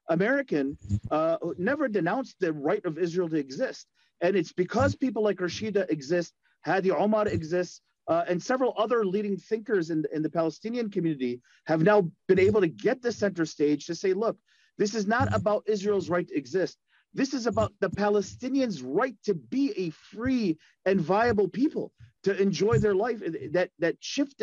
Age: 40-59